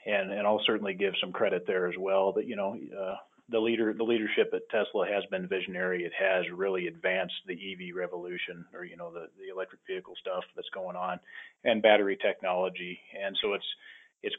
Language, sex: English, male